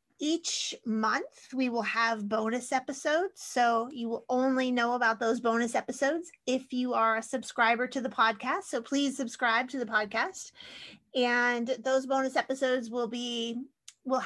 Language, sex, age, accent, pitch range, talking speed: English, female, 30-49, American, 225-265 Hz, 155 wpm